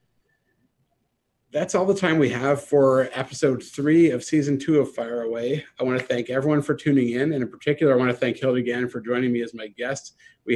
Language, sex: English, male